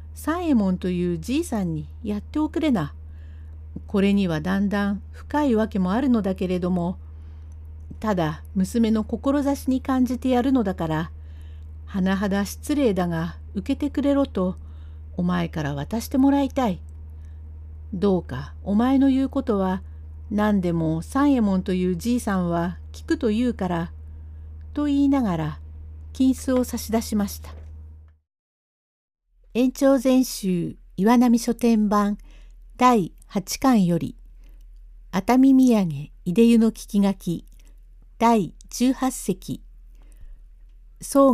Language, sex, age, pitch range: Japanese, female, 50-69, 155-240 Hz